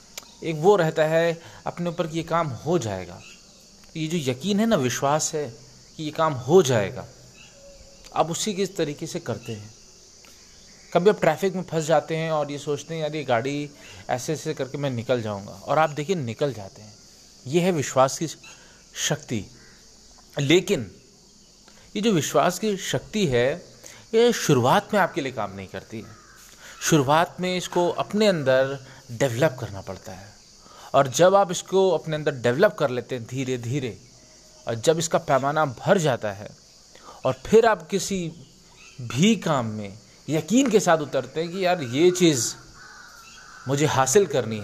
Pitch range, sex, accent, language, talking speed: 130-180 Hz, male, native, Hindi, 170 wpm